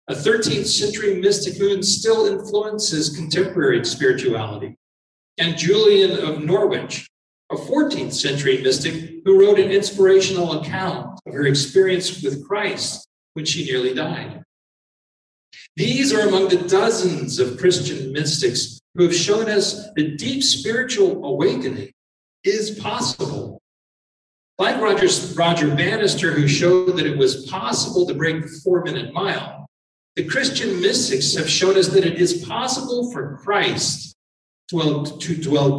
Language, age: English, 50-69